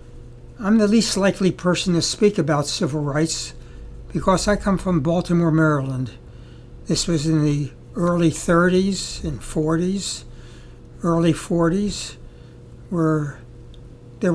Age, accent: 60-79, American